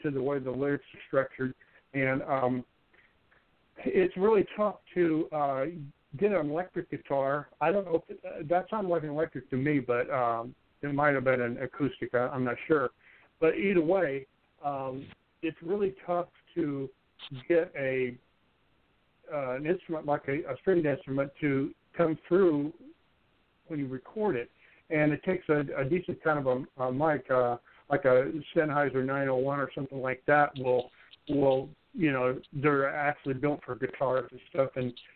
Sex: male